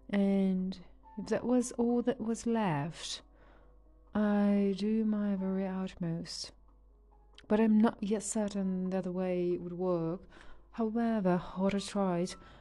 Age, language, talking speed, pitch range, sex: 30-49, English, 135 wpm, 180-210 Hz, female